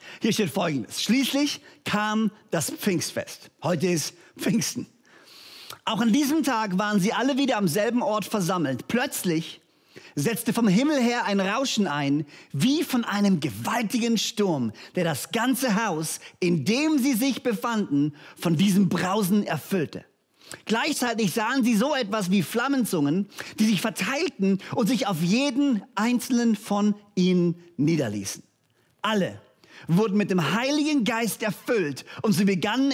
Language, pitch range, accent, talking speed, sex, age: German, 175-240 Hz, German, 140 wpm, male, 40-59